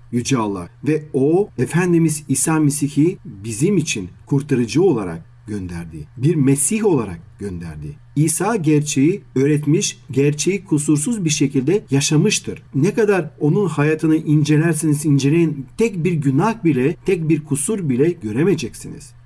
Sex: male